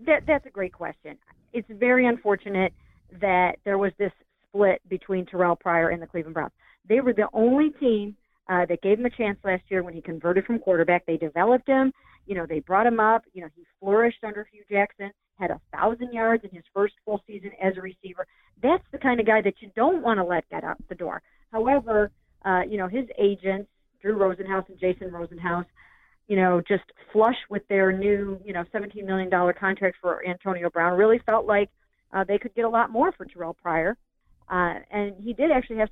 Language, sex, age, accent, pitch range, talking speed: English, female, 40-59, American, 180-225 Hz, 210 wpm